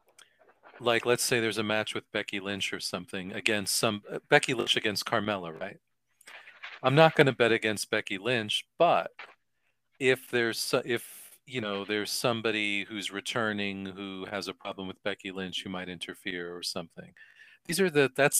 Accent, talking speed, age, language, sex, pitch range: American, 175 wpm, 40-59, English, male, 100-120 Hz